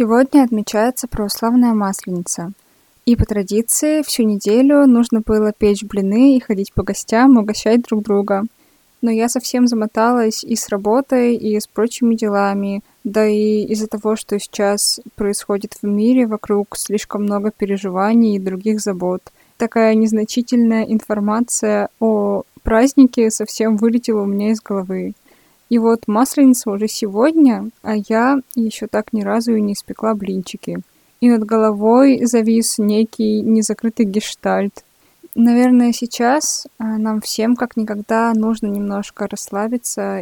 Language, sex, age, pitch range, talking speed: Russian, female, 20-39, 205-235 Hz, 135 wpm